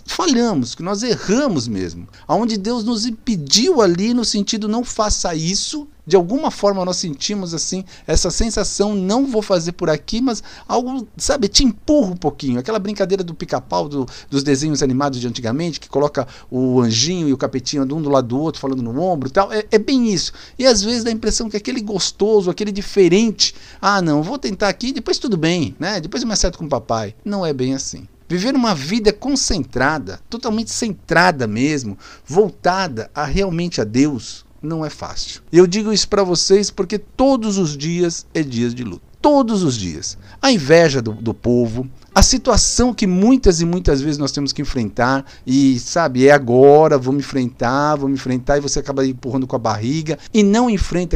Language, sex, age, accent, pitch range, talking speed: Portuguese, male, 50-69, Brazilian, 135-210 Hz, 195 wpm